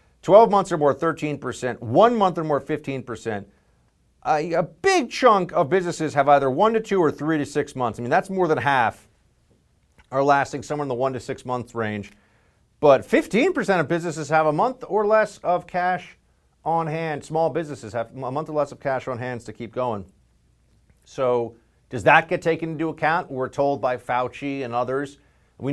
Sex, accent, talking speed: male, American, 195 wpm